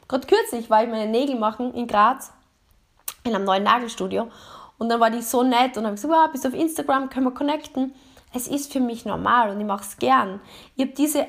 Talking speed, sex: 230 wpm, female